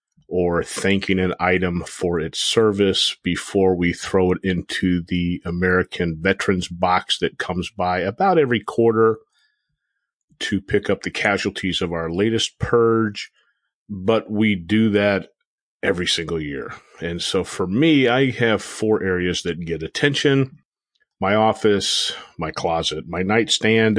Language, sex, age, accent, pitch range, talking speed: English, male, 40-59, American, 90-110 Hz, 140 wpm